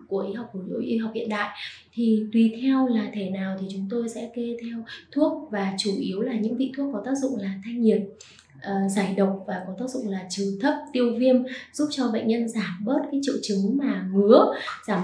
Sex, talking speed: female, 230 wpm